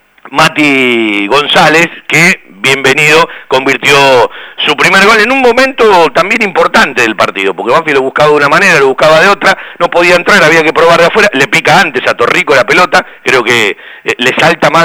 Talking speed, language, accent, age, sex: 185 wpm, Spanish, Argentinian, 50-69, male